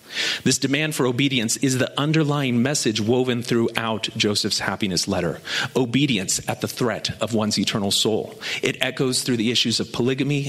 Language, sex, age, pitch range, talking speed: English, male, 40-59, 115-150 Hz, 160 wpm